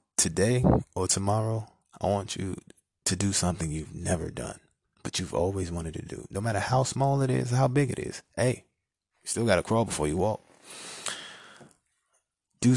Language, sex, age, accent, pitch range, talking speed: English, male, 20-39, American, 90-110 Hz, 180 wpm